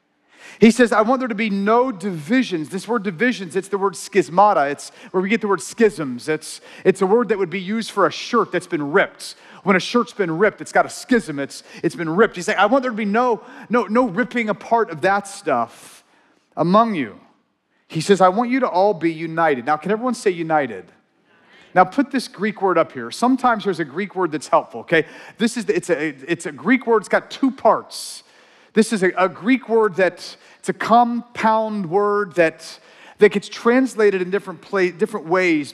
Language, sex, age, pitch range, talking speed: English, male, 40-59, 170-230 Hz, 215 wpm